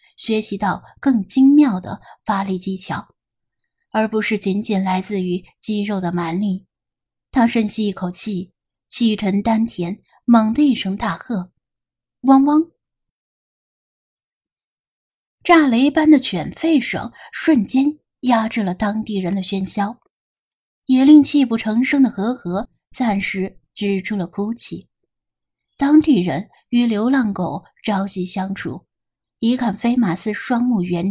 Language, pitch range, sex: Chinese, 190-255 Hz, female